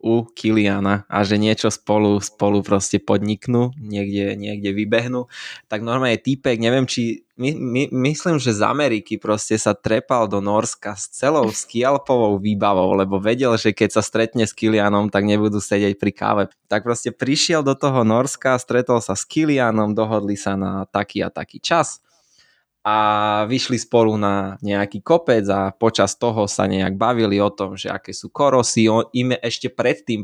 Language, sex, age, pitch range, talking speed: Slovak, male, 20-39, 100-115 Hz, 170 wpm